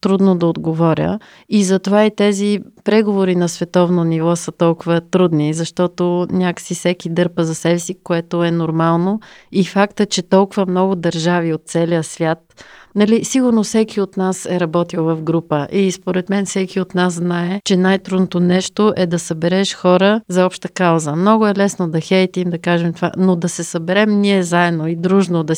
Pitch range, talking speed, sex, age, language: 170-205 Hz, 180 wpm, female, 30-49, Bulgarian